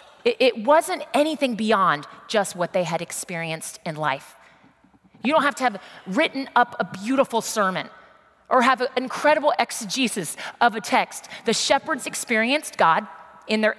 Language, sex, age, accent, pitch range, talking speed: English, female, 30-49, American, 180-250 Hz, 150 wpm